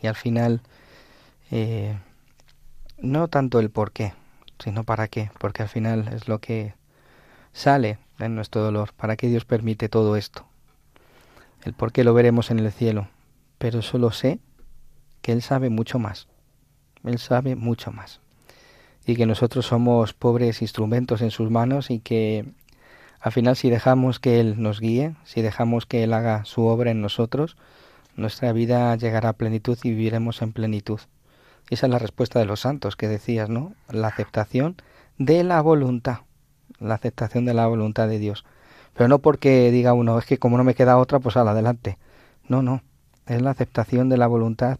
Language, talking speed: Spanish, 175 wpm